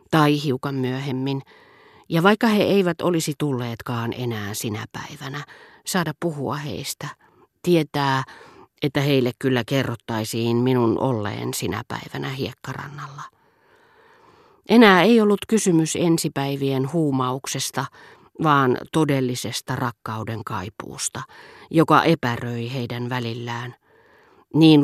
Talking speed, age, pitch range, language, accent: 95 wpm, 40-59, 125-160 Hz, Finnish, native